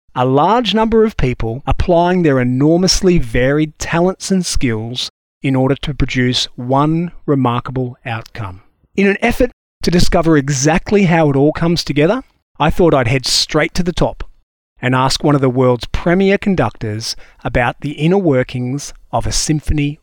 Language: English